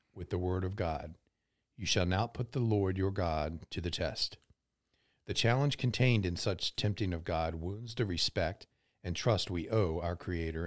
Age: 50-69